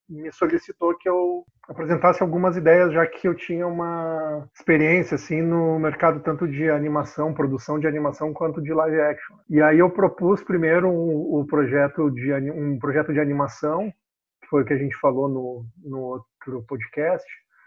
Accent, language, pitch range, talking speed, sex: Brazilian, Portuguese, 145-170 Hz, 175 wpm, male